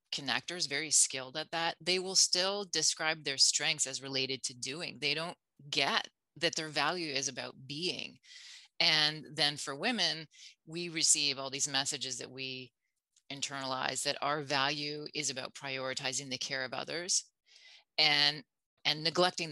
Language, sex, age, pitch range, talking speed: English, female, 30-49, 135-165 Hz, 150 wpm